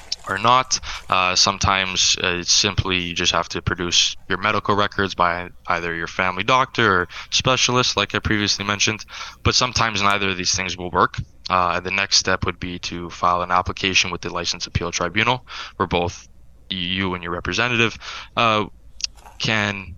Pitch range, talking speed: 85-105 Hz, 170 wpm